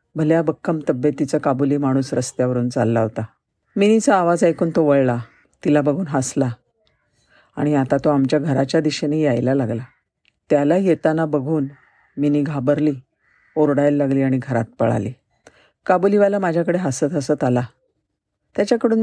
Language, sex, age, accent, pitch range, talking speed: Marathi, female, 50-69, native, 130-160 Hz, 125 wpm